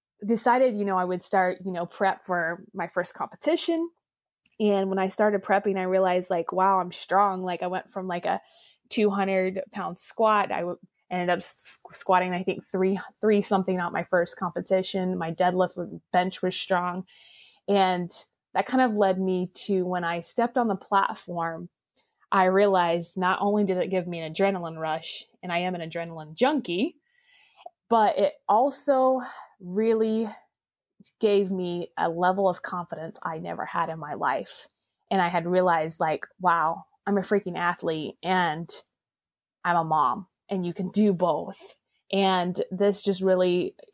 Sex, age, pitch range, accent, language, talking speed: female, 20-39, 175-200 Hz, American, English, 165 wpm